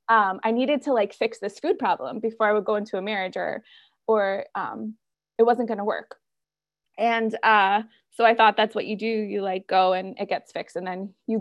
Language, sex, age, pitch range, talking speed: English, female, 20-39, 210-260 Hz, 225 wpm